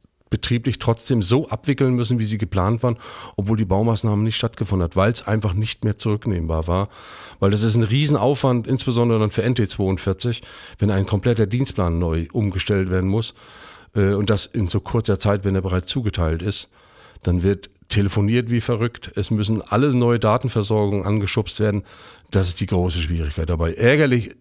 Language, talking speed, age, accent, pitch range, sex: German, 170 wpm, 40-59, German, 95-120 Hz, male